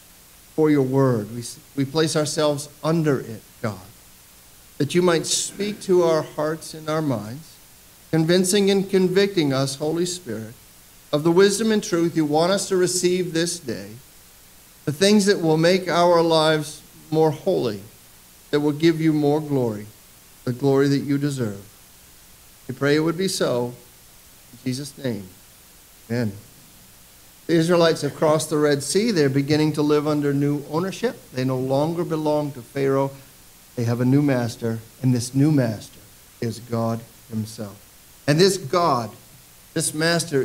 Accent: American